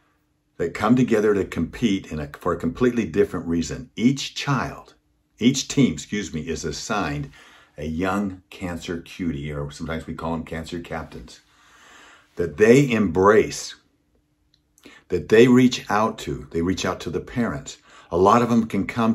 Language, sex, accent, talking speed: English, male, American, 155 wpm